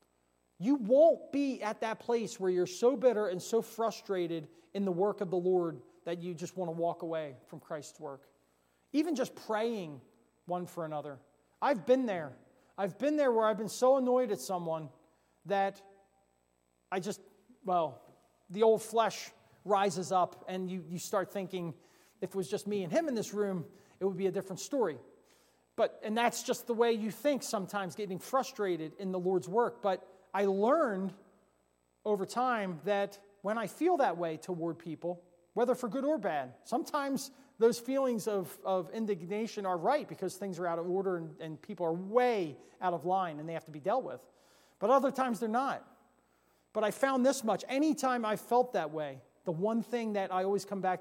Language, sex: English, male